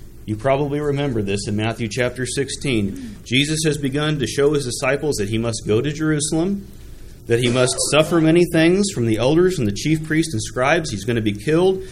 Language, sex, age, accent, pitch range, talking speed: English, male, 40-59, American, 110-145 Hz, 205 wpm